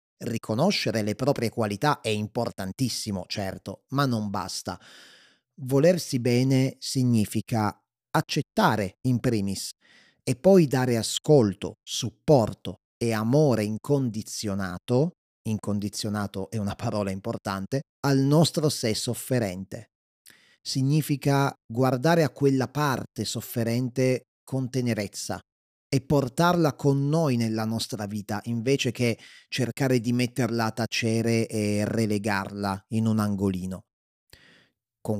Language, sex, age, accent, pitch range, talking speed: Italian, male, 30-49, native, 105-130 Hz, 105 wpm